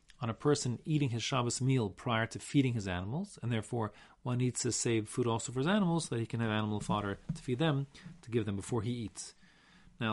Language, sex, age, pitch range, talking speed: English, male, 40-59, 115-155 Hz, 235 wpm